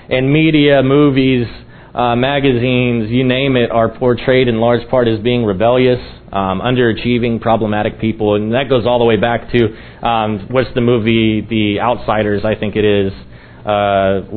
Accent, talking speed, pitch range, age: American, 165 wpm, 115-145 Hz, 30-49